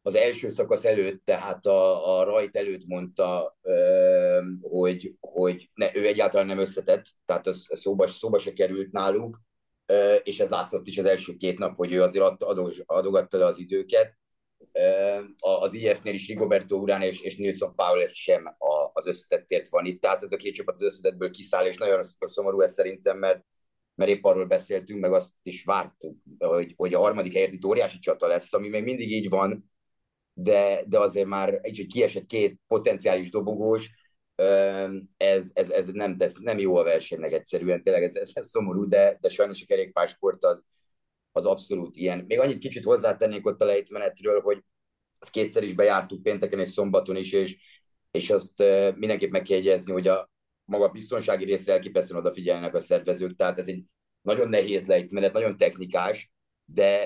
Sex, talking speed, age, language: male, 170 wpm, 30-49, Hungarian